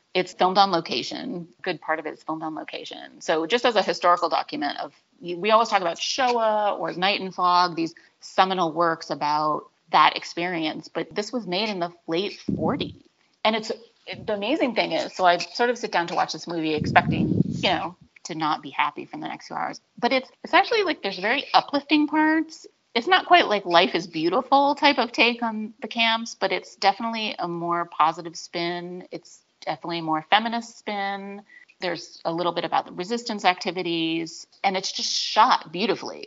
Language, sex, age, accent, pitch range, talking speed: English, female, 30-49, American, 170-235 Hz, 195 wpm